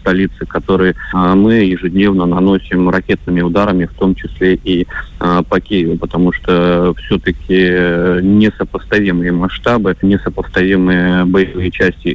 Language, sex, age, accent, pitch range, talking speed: Russian, male, 20-39, native, 90-100 Hz, 105 wpm